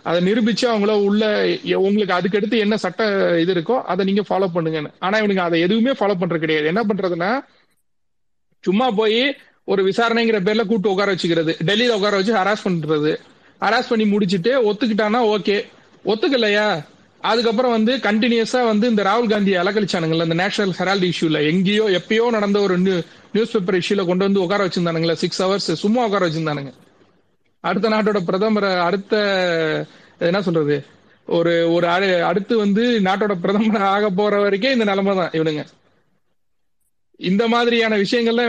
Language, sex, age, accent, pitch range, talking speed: Tamil, male, 40-59, native, 175-220 Hz, 140 wpm